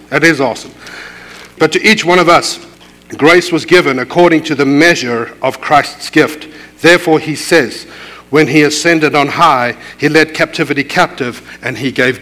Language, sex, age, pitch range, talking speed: English, male, 60-79, 135-175 Hz, 165 wpm